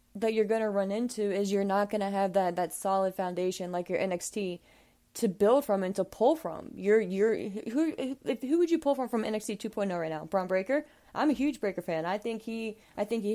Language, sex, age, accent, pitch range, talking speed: English, female, 20-39, American, 185-235 Hz, 235 wpm